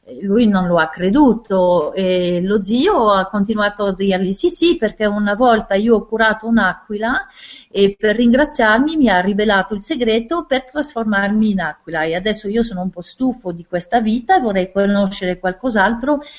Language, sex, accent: French, female, Italian